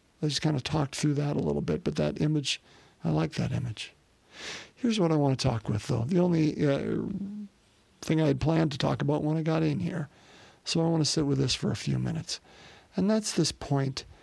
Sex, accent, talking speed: male, American, 230 wpm